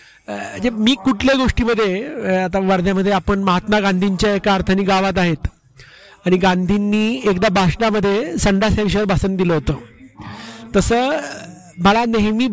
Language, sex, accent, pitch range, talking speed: Marathi, male, native, 195-235 Hz, 115 wpm